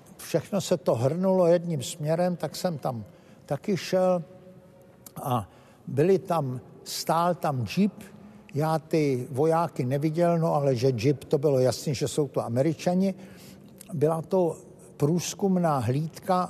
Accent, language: native, Czech